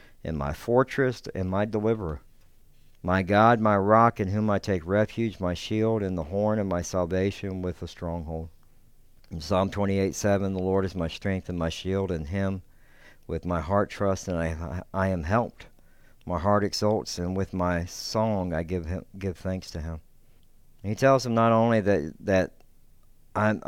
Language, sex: English, male